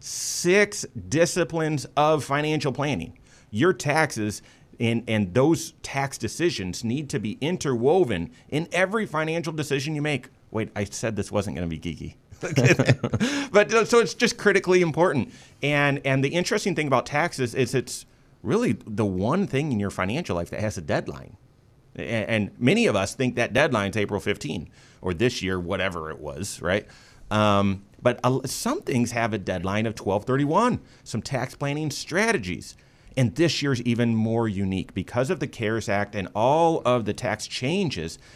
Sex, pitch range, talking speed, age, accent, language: male, 105-150 Hz, 160 wpm, 30-49, American, English